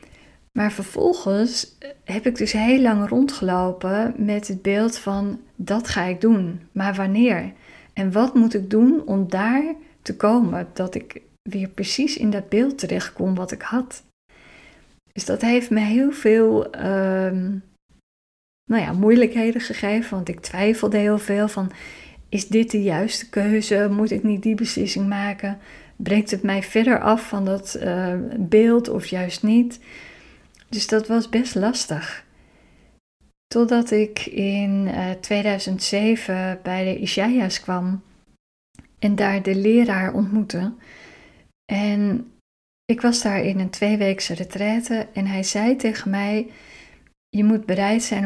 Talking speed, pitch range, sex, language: 140 wpm, 195-230 Hz, female, Dutch